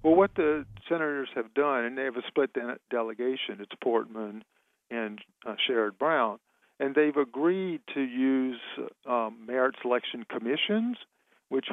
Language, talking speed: English, 145 wpm